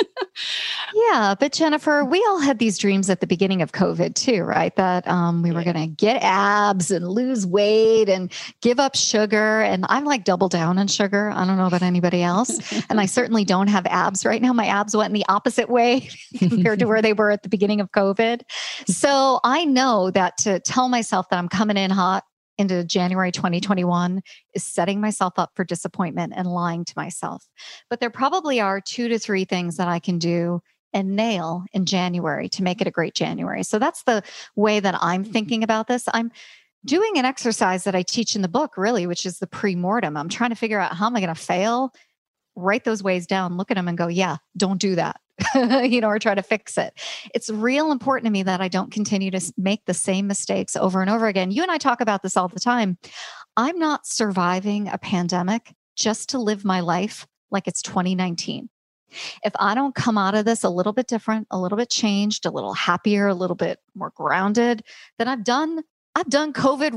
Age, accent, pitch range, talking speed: 40-59, American, 185-235 Hz, 215 wpm